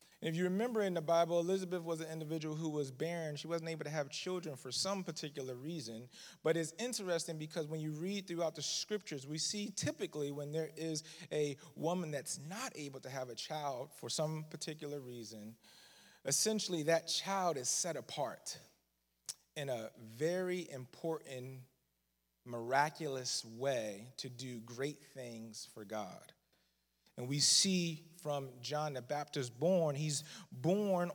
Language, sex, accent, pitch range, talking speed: English, male, American, 140-185 Hz, 155 wpm